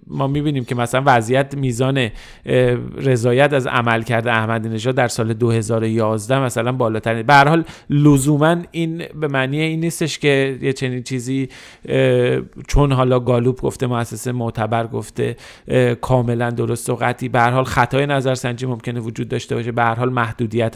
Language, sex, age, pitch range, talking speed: Persian, male, 40-59, 120-145 Hz, 155 wpm